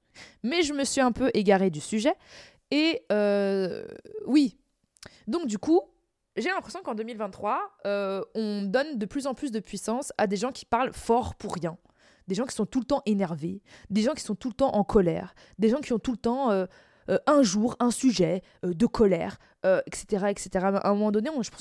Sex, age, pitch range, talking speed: female, 20-39, 195-260 Hz, 220 wpm